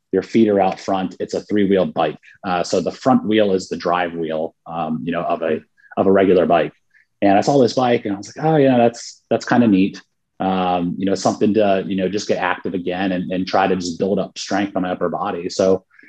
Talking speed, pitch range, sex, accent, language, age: 255 wpm, 90-110 Hz, male, American, English, 30-49